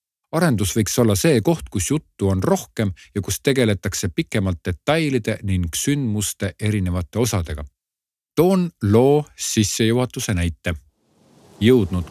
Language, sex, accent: Czech, male, Finnish